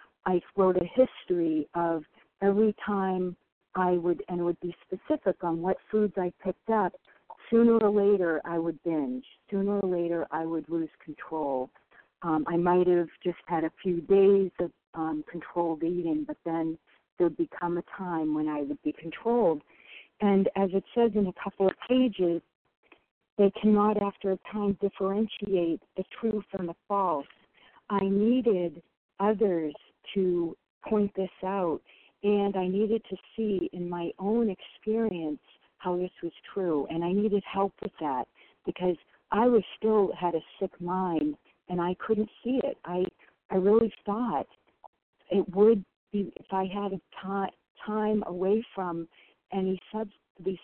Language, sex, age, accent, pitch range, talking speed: English, female, 50-69, American, 170-205 Hz, 160 wpm